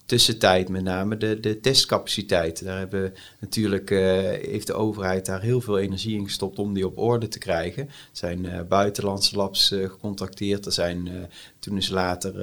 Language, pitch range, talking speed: Dutch, 95-110 Hz, 190 wpm